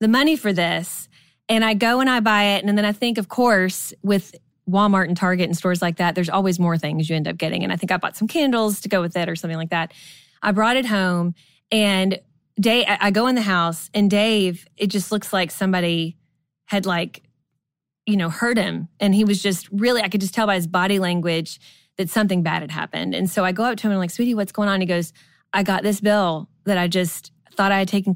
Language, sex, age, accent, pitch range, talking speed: English, female, 20-39, American, 170-205 Hz, 250 wpm